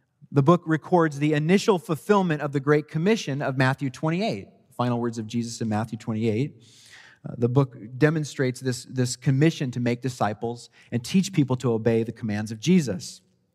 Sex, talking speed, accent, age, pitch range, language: male, 175 wpm, American, 30-49, 125-180 Hz, English